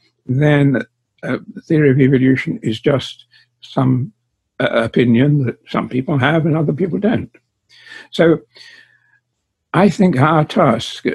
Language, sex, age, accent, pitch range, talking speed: English, male, 60-79, American, 120-150 Hz, 130 wpm